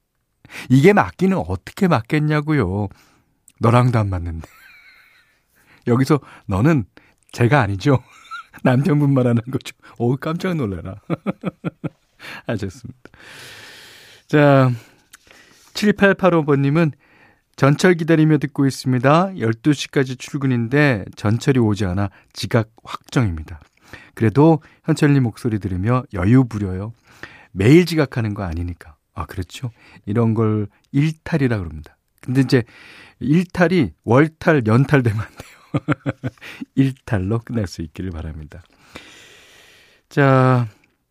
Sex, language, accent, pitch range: male, Korean, native, 105-150 Hz